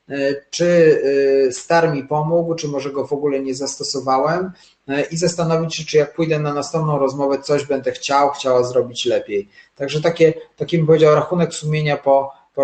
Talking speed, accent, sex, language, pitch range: 160 wpm, native, male, Polish, 130-155 Hz